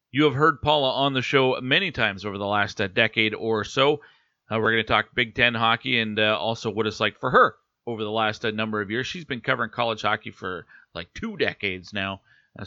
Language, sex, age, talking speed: English, male, 40-59, 230 wpm